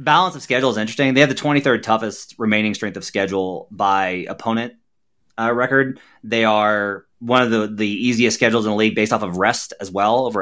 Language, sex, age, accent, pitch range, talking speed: English, male, 30-49, American, 105-125 Hz, 205 wpm